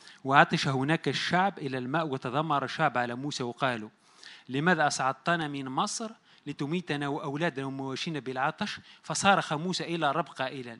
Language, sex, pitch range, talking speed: Arabic, male, 135-185 Hz, 130 wpm